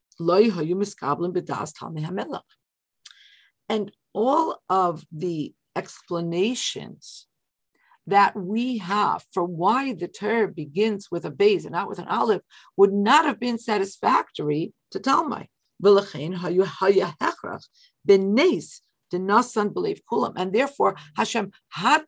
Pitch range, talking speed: 175-235 Hz, 85 wpm